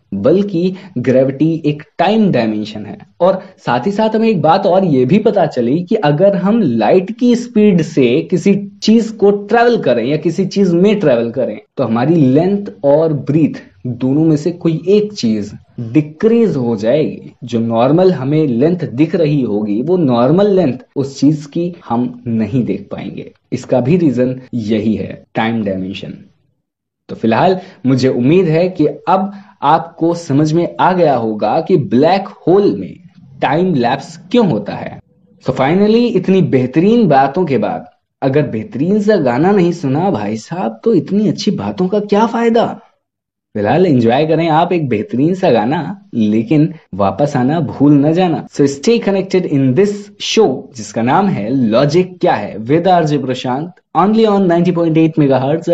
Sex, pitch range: male, 130-190 Hz